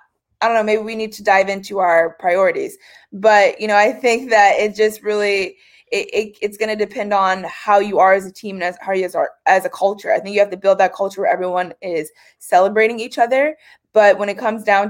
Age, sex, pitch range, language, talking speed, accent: 20-39, female, 190-225 Hz, English, 240 wpm, American